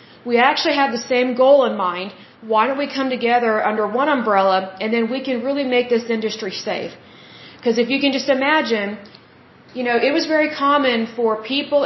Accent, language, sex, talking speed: American, Bengali, female, 195 wpm